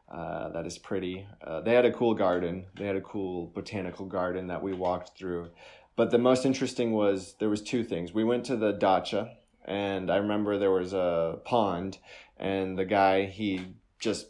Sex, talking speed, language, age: male, 195 wpm, Ukrainian, 20-39